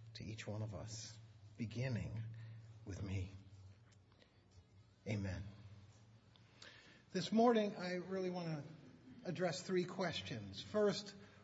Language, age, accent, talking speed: English, 60-79, American, 95 wpm